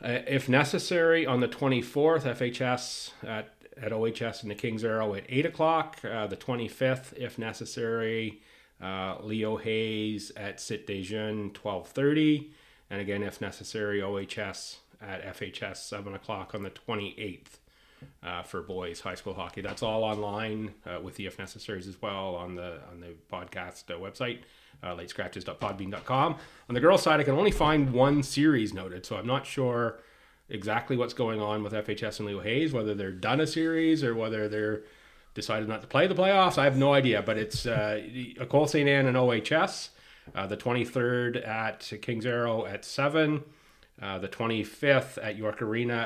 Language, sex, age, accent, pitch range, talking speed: English, male, 30-49, American, 105-130 Hz, 170 wpm